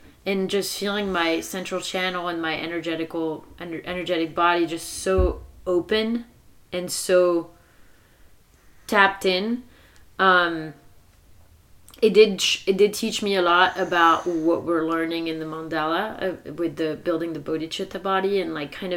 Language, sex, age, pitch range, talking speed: English, female, 30-49, 165-195 Hz, 135 wpm